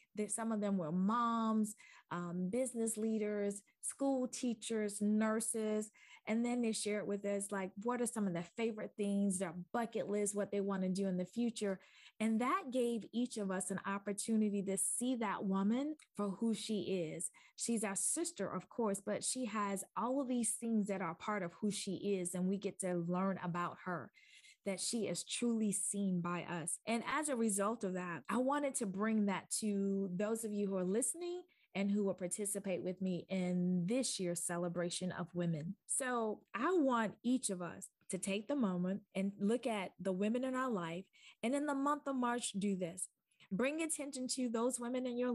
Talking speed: 195 wpm